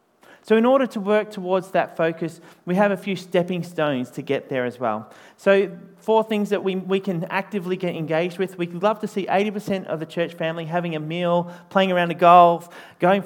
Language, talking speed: English, 215 wpm